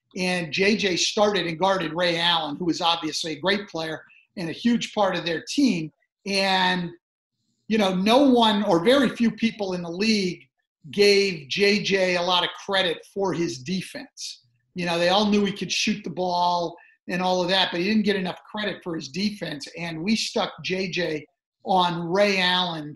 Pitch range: 170-205 Hz